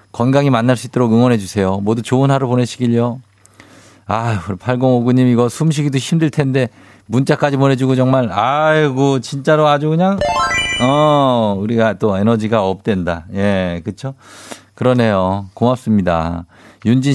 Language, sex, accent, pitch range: Korean, male, native, 100-135 Hz